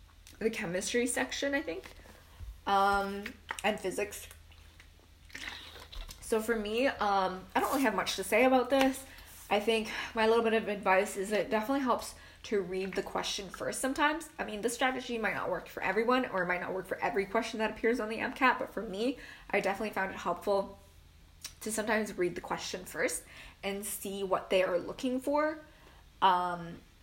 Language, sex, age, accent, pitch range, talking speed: English, female, 10-29, American, 180-235 Hz, 185 wpm